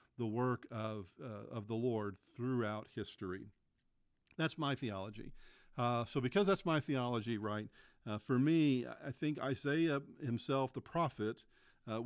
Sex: male